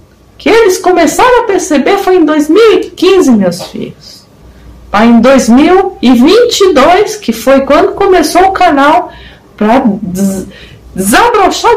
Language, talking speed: English, 100 wpm